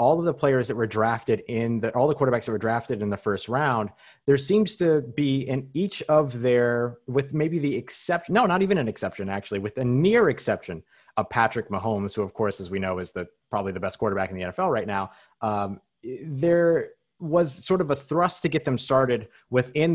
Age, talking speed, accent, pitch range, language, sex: 30-49, 220 wpm, American, 110-145 Hz, English, male